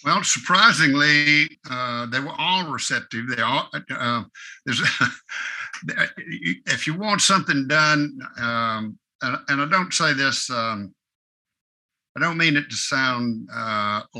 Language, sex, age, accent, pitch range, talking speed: English, male, 60-79, American, 110-135 Hz, 130 wpm